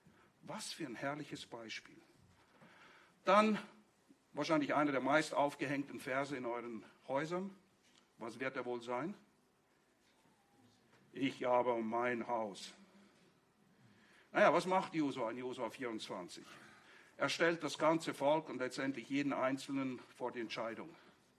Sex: male